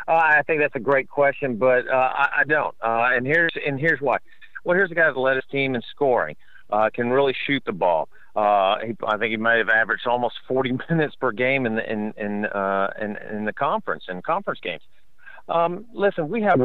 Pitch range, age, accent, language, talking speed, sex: 115-145 Hz, 50-69, American, English, 225 wpm, male